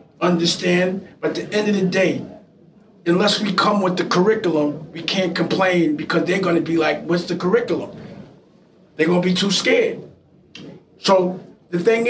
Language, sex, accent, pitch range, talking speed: English, male, American, 170-210 Hz, 165 wpm